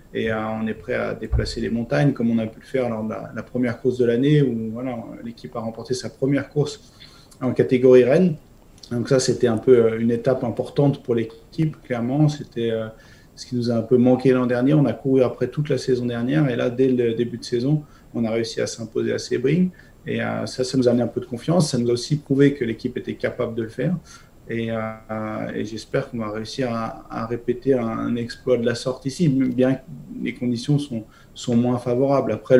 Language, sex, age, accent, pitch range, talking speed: French, male, 30-49, French, 115-130 Hz, 235 wpm